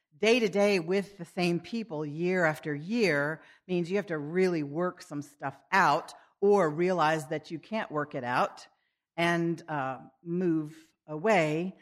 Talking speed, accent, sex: 145 wpm, American, female